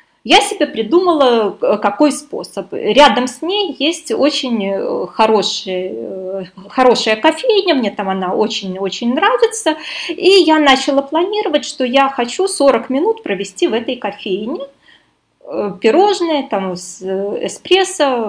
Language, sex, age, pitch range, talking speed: Russian, female, 20-39, 215-310 Hz, 110 wpm